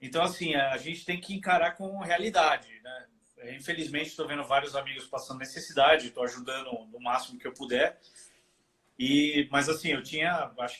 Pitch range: 140-195 Hz